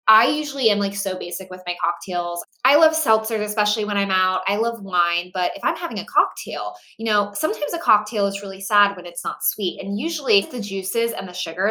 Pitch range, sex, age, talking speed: 180-220 Hz, female, 20-39, 230 wpm